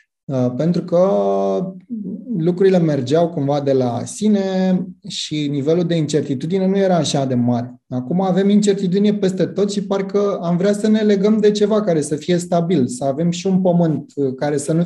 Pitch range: 140-200 Hz